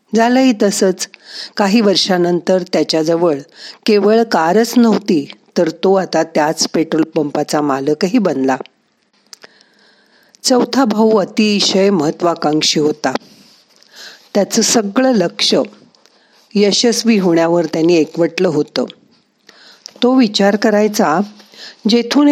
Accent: native